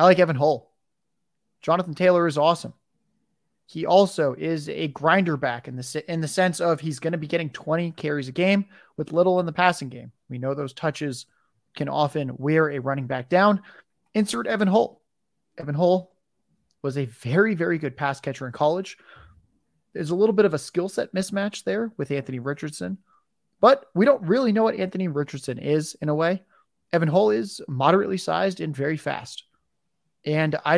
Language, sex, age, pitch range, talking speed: English, male, 20-39, 145-185 Hz, 185 wpm